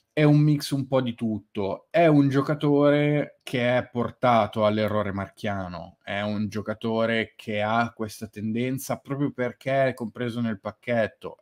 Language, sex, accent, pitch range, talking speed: Italian, male, native, 110-130 Hz, 145 wpm